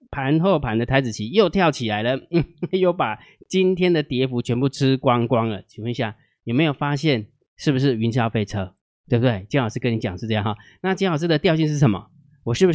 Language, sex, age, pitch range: Chinese, male, 20-39, 120-160 Hz